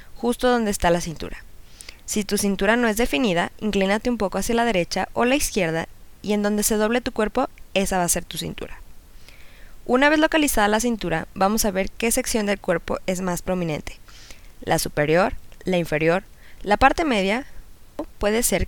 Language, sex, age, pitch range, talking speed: Spanish, female, 20-39, 170-225 Hz, 185 wpm